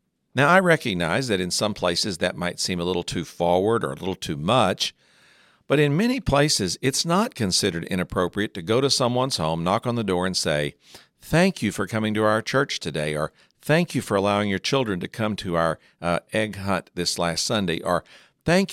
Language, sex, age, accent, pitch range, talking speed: English, male, 60-79, American, 90-125 Hz, 210 wpm